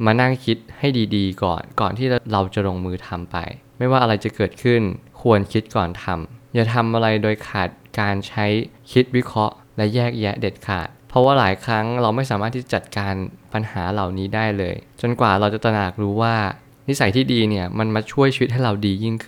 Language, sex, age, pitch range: Thai, male, 20-39, 105-125 Hz